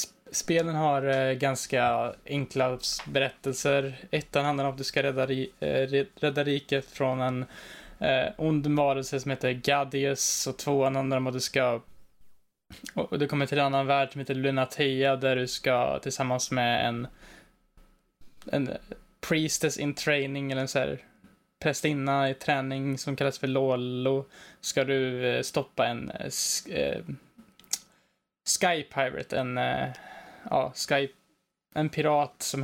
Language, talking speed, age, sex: Swedish, 145 wpm, 10-29, male